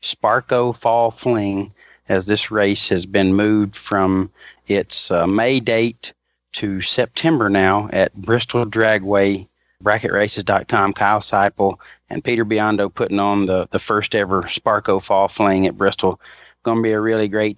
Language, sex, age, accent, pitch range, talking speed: English, male, 30-49, American, 95-110 Hz, 145 wpm